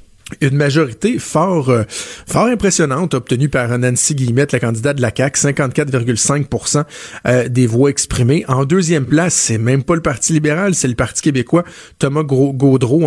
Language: French